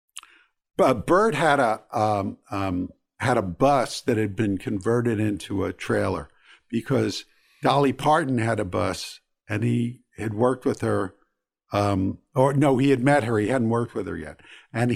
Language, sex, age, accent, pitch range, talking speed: English, male, 50-69, American, 100-130 Hz, 165 wpm